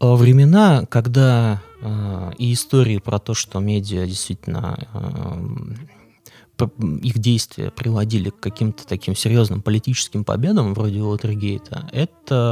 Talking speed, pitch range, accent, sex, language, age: 110 wpm, 100-125 Hz, native, male, Russian, 20-39